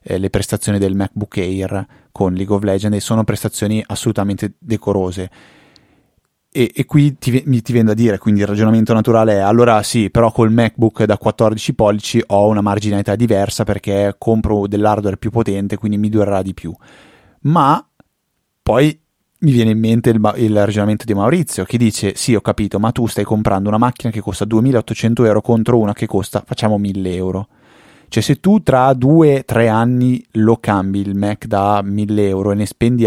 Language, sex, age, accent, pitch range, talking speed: Italian, male, 20-39, native, 100-115 Hz, 175 wpm